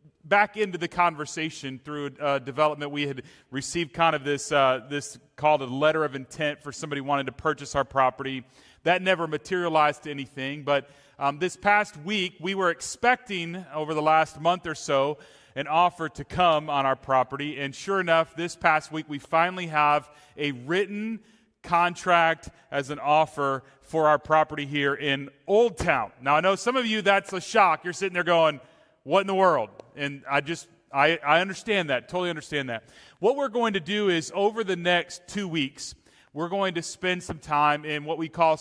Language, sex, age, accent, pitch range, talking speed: English, male, 30-49, American, 145-185 Hz, 190 wpm